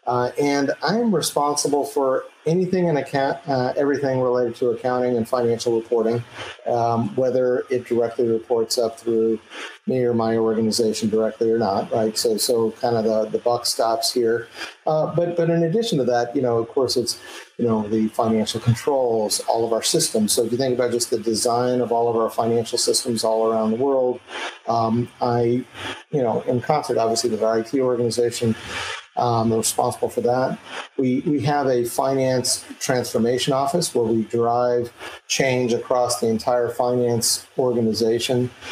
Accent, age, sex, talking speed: American, 40-59, male, 170 wpm